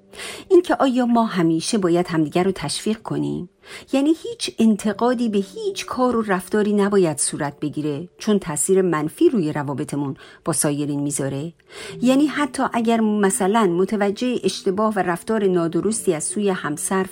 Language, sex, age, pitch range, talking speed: Persian, female, 50-69, 165-230 Hz, 140 wpm